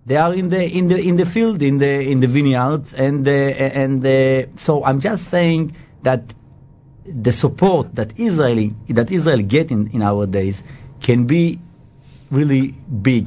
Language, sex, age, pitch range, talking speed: English, male, 50-69, 125-150 Hz, 170 wpm